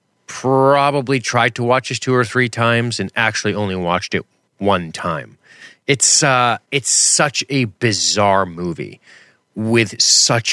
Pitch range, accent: 95-125 Hz, American